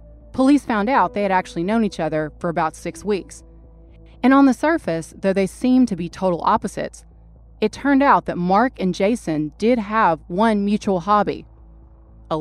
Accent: American